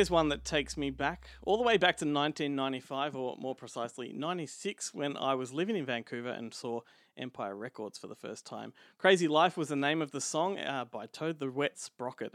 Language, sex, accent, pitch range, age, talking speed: English, male, Australian, 130-170 Hz, 30-49, 215 wpm